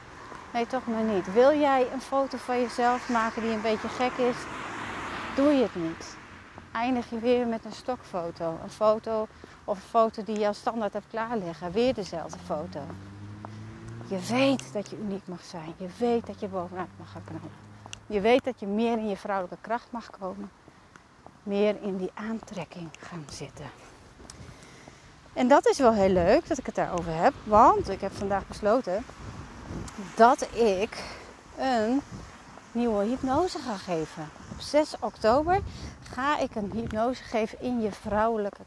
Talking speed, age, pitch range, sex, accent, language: 165 wpm, 30-49, 180-235 Hz, female, Dutch, Dutch